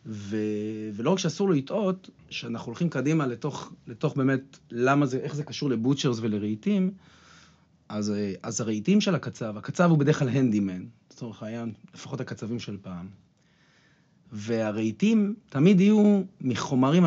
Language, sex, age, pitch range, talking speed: Hebrew, male, 40-59, 115-150 Hz, 135 wpm